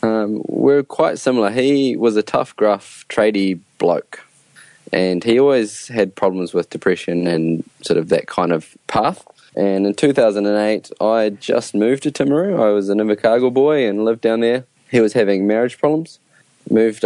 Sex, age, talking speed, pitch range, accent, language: male, 20-39, 170 wpm, 90-115 Hz, Australian, English